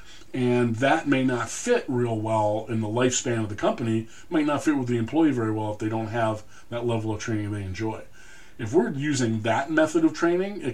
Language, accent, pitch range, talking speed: English, American, 110-135 Hz, 220 wpm